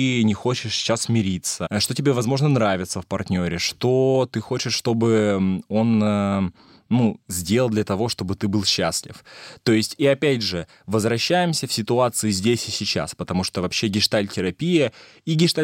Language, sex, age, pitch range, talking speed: Russian, male, 20-39, 95-125 Hz, 145 wpm